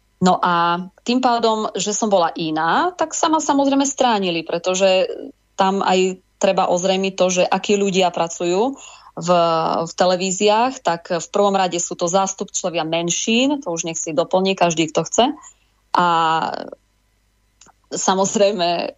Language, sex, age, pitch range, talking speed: English, female, 20-39, 170-200 Hz, 140 wpm